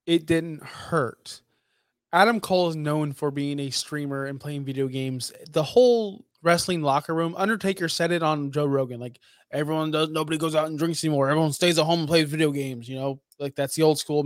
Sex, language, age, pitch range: male, English, 20-39, 140-175 Hz